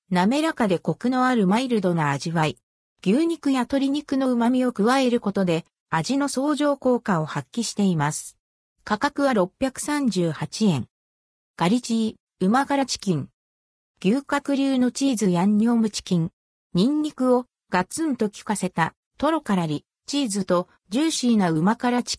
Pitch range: 170-265 Hz